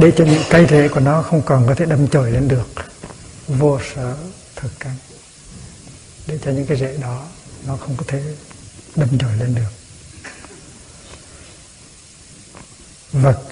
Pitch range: 125-150 Hz